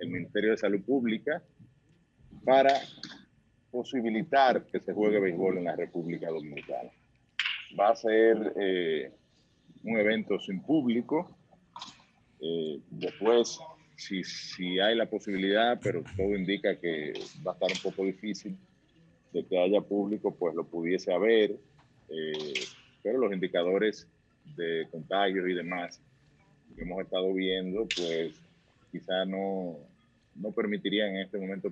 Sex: male